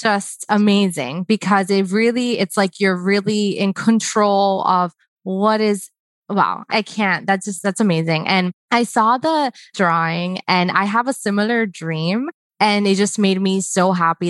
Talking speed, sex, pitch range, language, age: 160 wpm, female, 175-215 Hz, English, 20-39